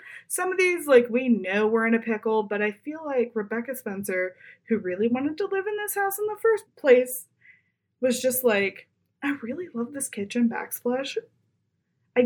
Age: 20-39